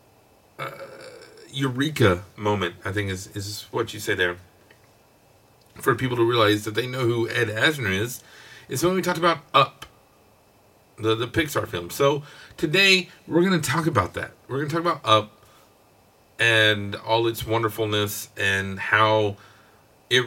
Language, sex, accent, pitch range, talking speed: English, male, American, 105-125 Hz, 155 wpm